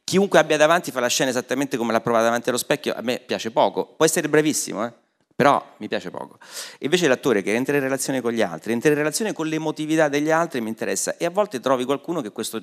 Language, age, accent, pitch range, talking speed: Italian, 40-59, native, 105-135 Hz, 240 wpm